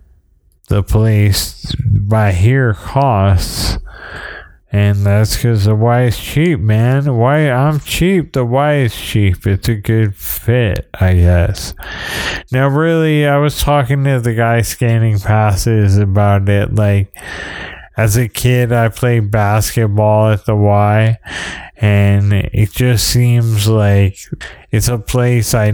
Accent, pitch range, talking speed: American, 100-120 Hz, 135 wpm